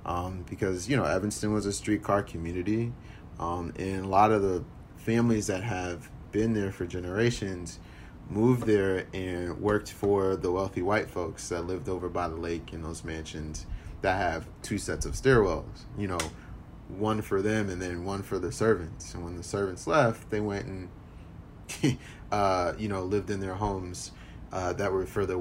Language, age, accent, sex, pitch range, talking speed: English, 30-49, American, male, 90-110 Hz, 180 wpm